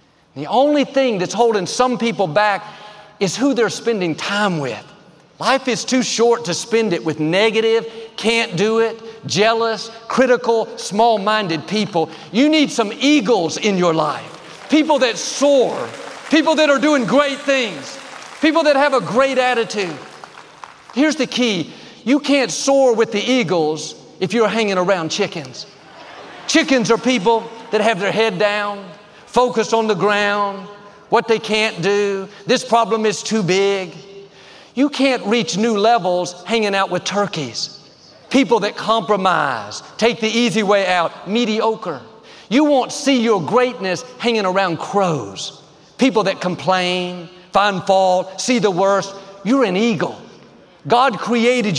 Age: 50-69